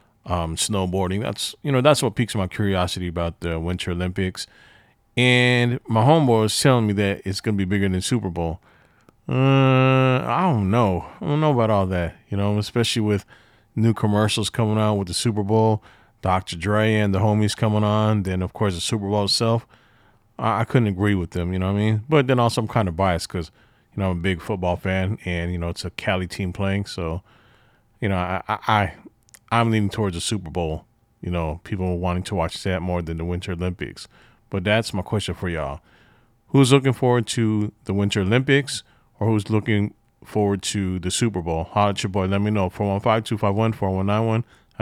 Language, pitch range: English, 95-115 Hz